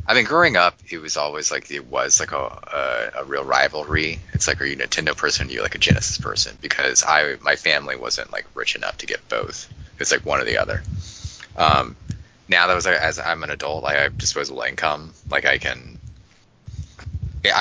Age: 20-39